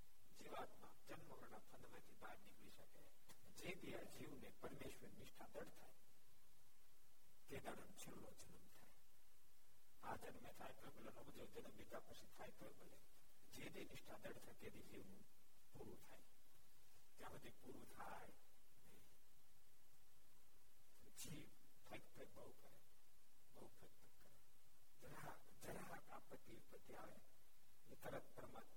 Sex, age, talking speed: male, 60-79, 95 wpm